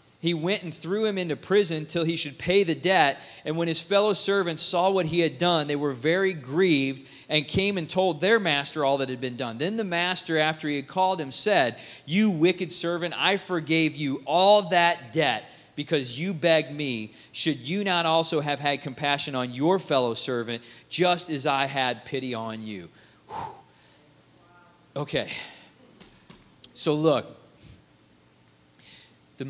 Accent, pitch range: American, 135-185 Hz